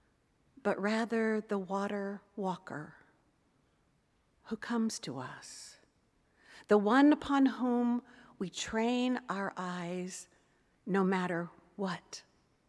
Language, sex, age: English, female, 50-69